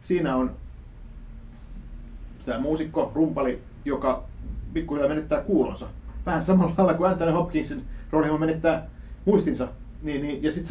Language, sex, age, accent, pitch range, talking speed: Finnish, male, 40-59, native, 105-140 Hz, 125 wpm